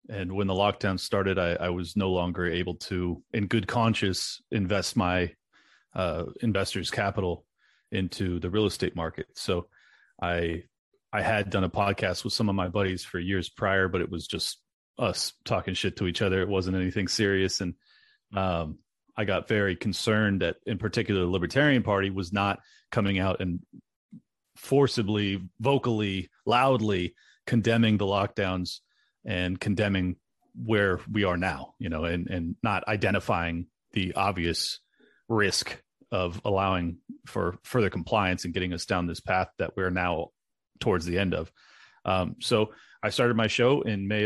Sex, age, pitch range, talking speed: male, 30-49, 90-110 Hz, 160 wpm